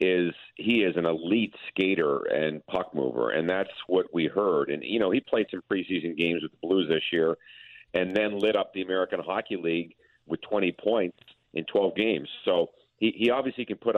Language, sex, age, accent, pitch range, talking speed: English, male, 50-69, American, 90-110 Hz, 200 wpm